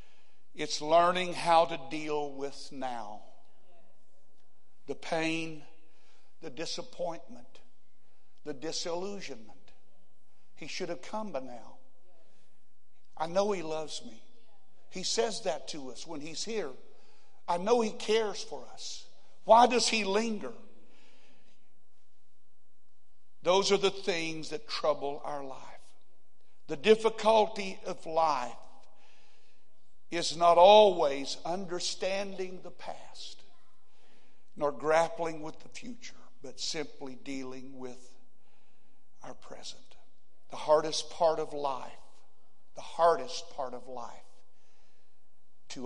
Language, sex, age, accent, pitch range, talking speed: English, male, 60-79, American, 150-195 Hz, 105 wpm